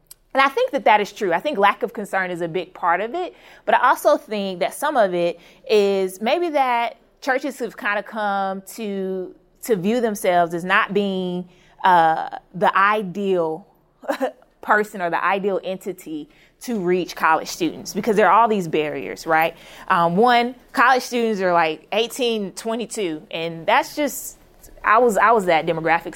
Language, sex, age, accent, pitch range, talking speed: English, female, 20-39, American, 175-230 Hz, 175 wpm